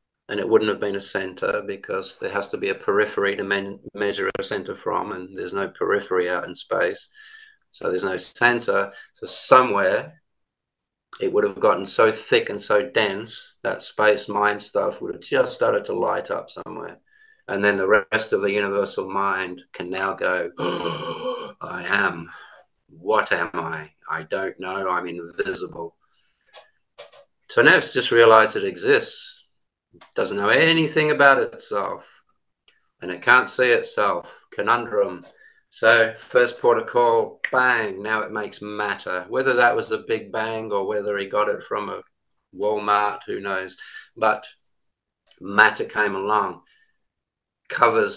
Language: English